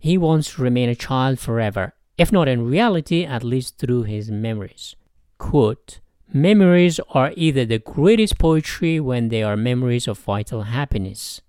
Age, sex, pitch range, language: 50-69, male, 110-145 Hz, English